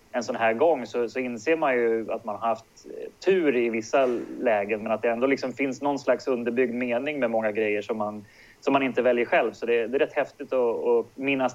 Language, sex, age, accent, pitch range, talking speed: English, male, 30-49, Swedish, 115-140 Hz, 240 wpm